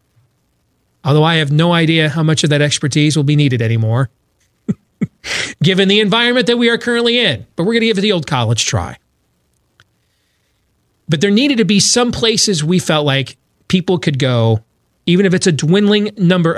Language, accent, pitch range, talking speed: English, American, 120-180 Hz, 185 wpm